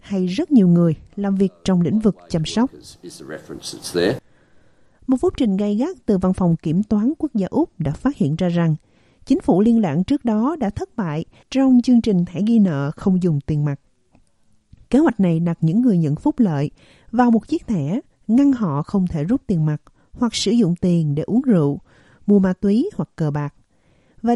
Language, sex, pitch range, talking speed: Vietnamese, female, 165-235 Hz, 200 wpm